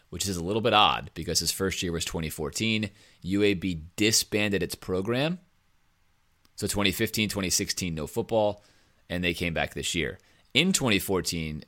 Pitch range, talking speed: 80-105 Hz, 150 wpm